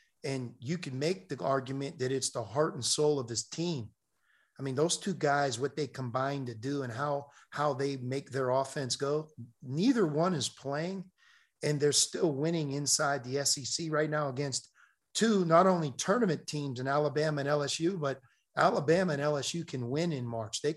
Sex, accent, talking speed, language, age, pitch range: male, American, 190 wpm, English, 50-69, 130-155 Hz